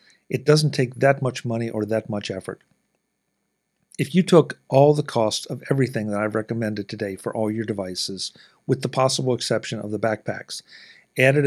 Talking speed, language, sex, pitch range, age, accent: 180 wpm, English, male, 105-130 Hz, 50-69, American